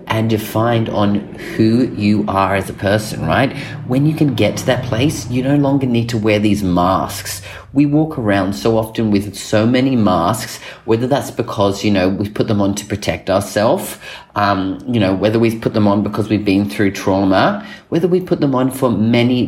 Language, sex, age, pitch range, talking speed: English, male, 30-49, 100-125 Hz, 205 wpm